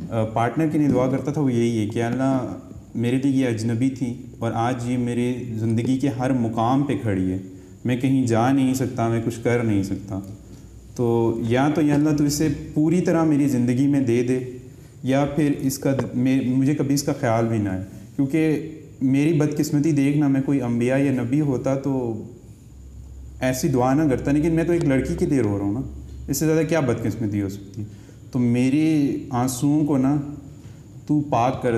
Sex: male